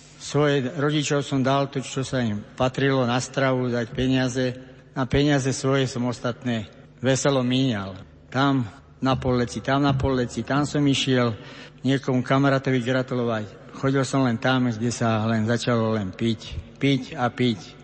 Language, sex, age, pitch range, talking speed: Slovak, male, 60-79, 125-140 Hz, 150 wpm